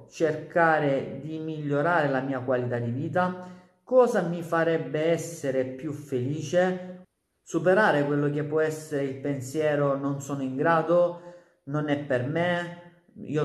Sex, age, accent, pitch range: male, 40-59, native, 145-180 Hz